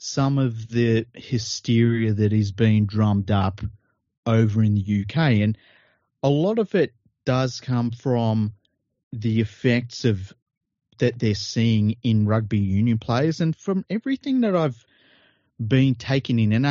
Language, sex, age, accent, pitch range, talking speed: English, male, 30-49, Australian, 110-135 Hz, 145 wpm